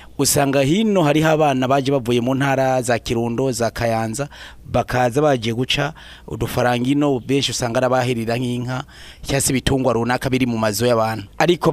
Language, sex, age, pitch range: French, male, 30-49, 120-150 Hz